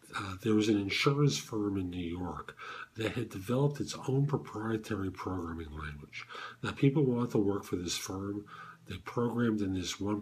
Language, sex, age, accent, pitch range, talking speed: English, male, 50-69, American, 105-150 Hz, 175 wpm